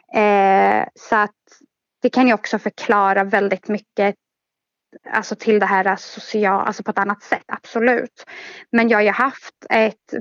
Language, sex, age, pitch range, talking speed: Swedish, female, 20-39, 200-230 Hz, 160 wpm